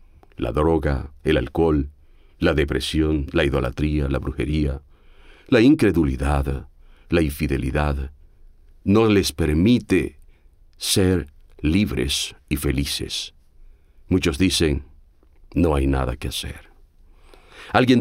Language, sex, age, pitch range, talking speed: Spanish, male, 50-69, 70-100 Hz, 95 wpm